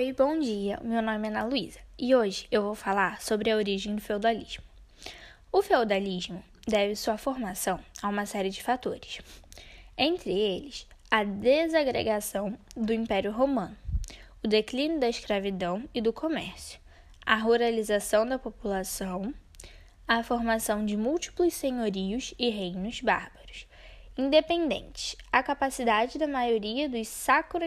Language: Portuguese